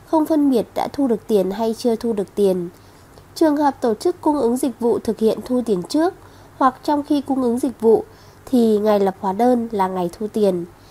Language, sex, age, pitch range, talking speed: Vietnamese, female, 20-39, 210-275 Hz, 225 wpm